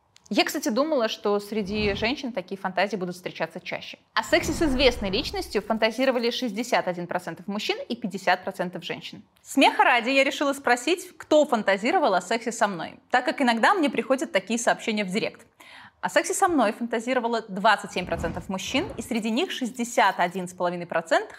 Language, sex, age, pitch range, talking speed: Russian, female, 20-39, 200-280 Hz, 150 wpm